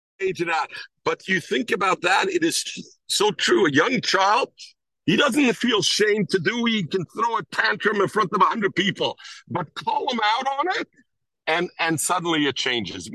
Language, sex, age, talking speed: English, male, 50-69, 190 wpm